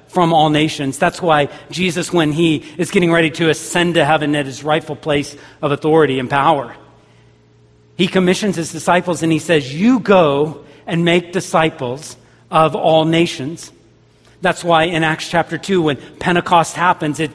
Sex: male